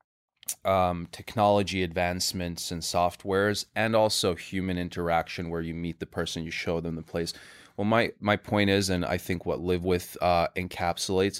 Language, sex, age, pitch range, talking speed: English, male, 20-39, 90-100 Hz, 170 wpm